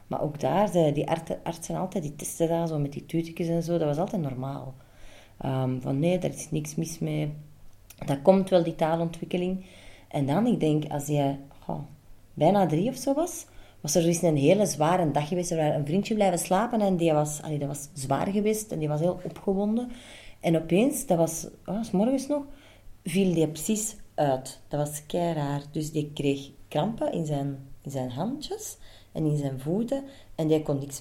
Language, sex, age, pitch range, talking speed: Dutch, female, 30-49, 140-180 Hz, 195 wpm